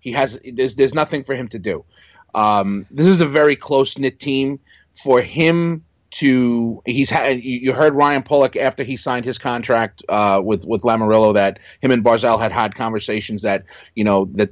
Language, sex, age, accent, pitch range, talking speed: English, male, 30-49, American, 105-130 Hz, 190 wpm